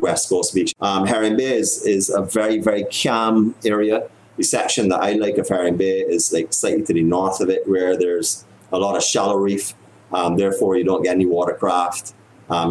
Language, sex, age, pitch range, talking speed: English, male, 30-49, 90-105 Hz, 210 wpm